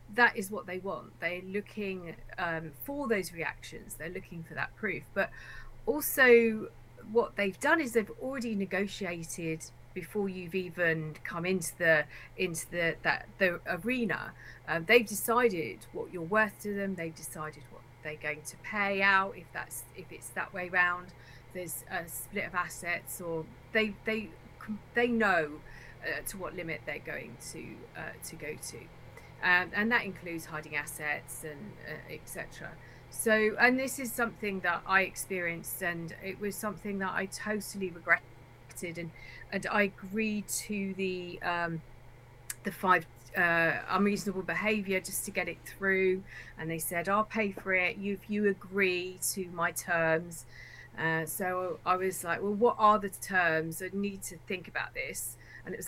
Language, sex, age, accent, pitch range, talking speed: English, female, 40-59, British, 160-205 Hz, 170 wpm